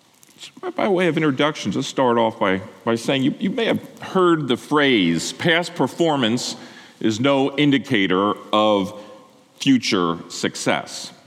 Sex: male